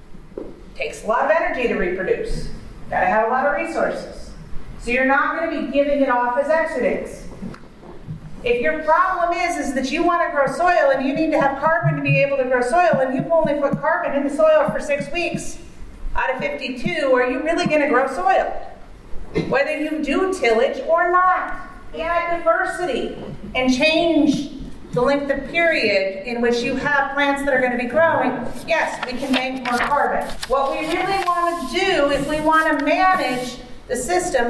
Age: 40-59